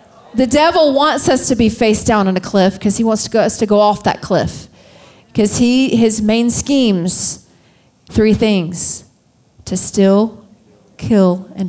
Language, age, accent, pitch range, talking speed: English, 30-49, American, 190-230 Hz, 160 wpm